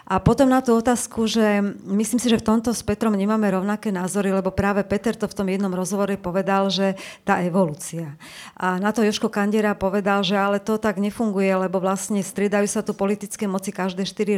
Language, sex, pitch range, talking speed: Slovak, female, 200-235 Hz, 200 wpm